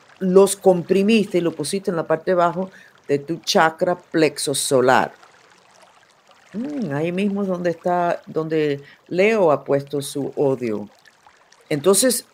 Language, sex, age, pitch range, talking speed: Spanish, female, 50-69, 140-180 Hz, 135 wpm